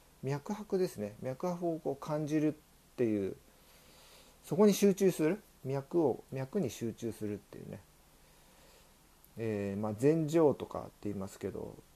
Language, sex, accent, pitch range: Japanese, male, native, 115-170 Hz